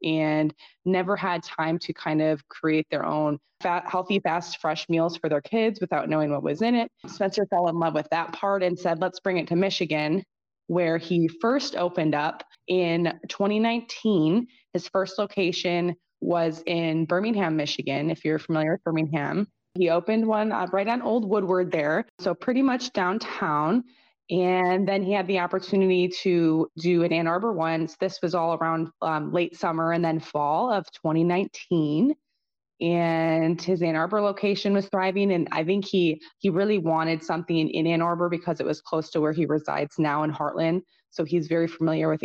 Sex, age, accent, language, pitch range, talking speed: female, 20-39, American, English, 160-195 Hz, 180 wpm